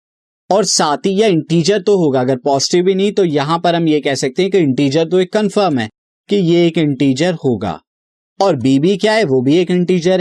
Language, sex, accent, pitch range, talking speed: Hindi, male, native, 140-195 Hz, 230 wpm